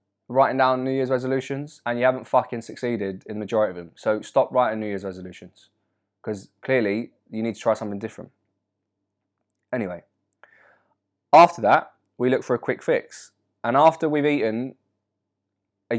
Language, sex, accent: English, male, British